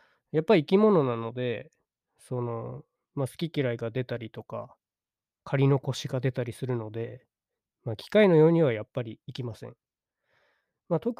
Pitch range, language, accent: 125-165 Hz, Japanese, native